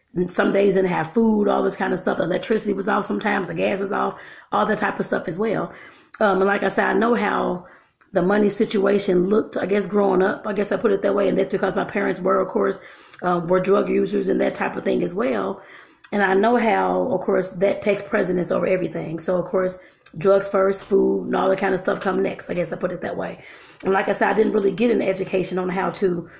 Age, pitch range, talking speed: 30-49, 180-215 Hz, 255 wpm